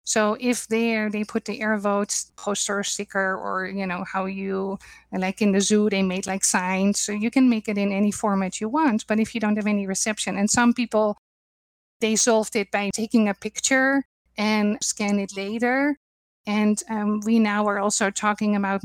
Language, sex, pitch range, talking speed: English, female, 205-235 Hz, 195 wpm